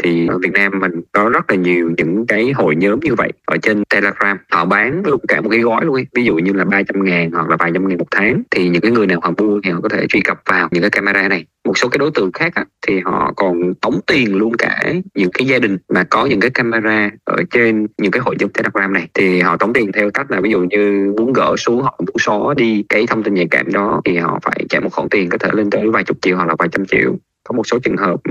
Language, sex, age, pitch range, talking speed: Vietnamese, male, 20-39, 90-115 Hz, 285 wpm